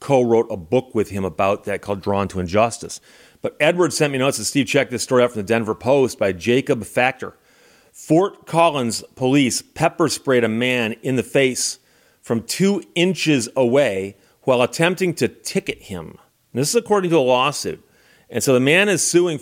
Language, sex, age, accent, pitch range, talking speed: English, male, 30-49, American, 125-175 Hz, 185 wpm